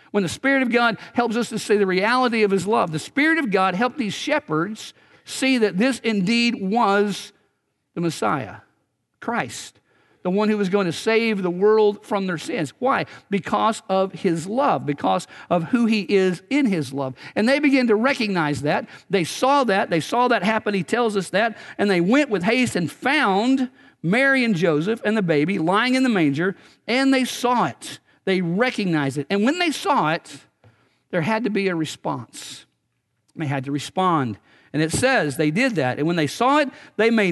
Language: English